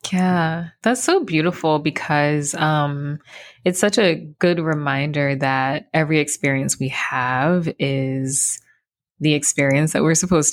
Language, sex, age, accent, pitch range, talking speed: English, female, 20-39, American, 140-165 Hz, 125 wpm